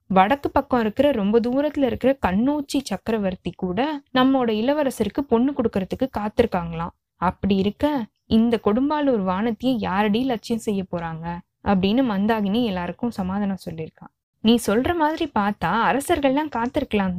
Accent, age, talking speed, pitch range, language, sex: native, 20-39, 120 wpm, 195-270 Hz, Tamil, female